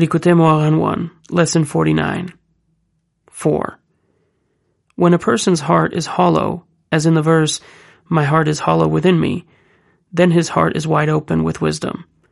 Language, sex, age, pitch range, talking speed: English, male, 30-49, 155-175 Hz, 140 wpm